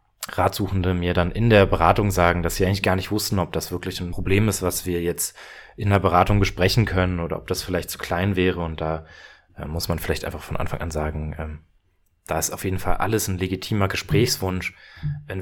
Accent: German